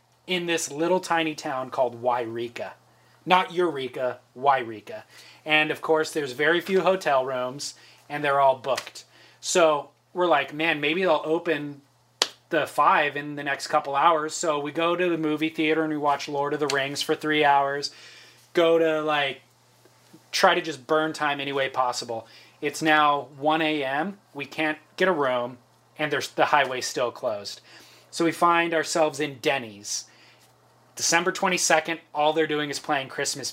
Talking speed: 165 wpm